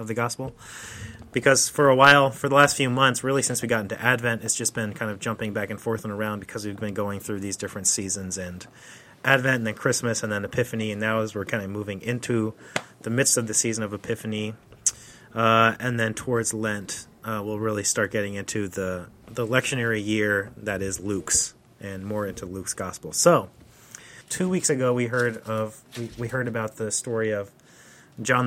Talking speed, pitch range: 205 wpm, 110-130 Hz